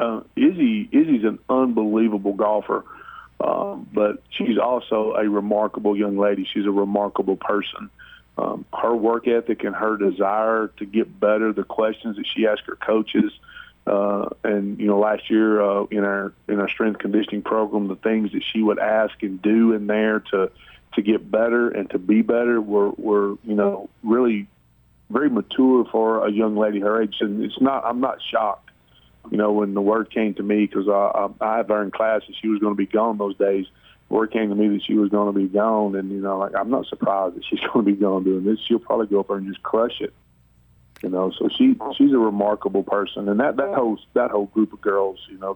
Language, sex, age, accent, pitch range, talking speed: English, male, 40-59, American, 100-110 Hz, 215 wpm